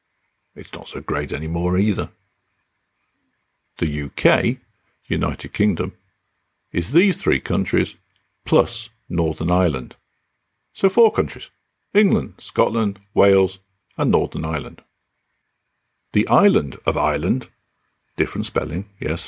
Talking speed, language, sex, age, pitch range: 105 wpm, English, male, 50-69, 80-105 Hz